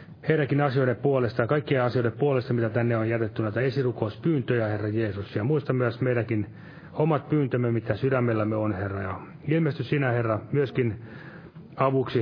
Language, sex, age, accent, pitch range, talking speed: Finnish, male, 30-49, native, 110-130 Hz, 150 wpm